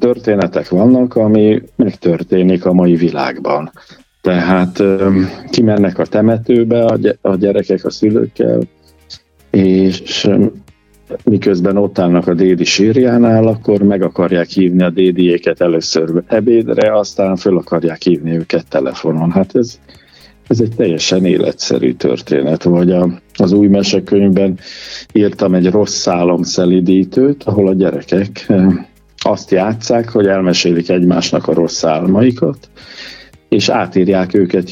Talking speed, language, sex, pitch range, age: 115 wpm, Hungarian, male, 85-100 Hz, 50-69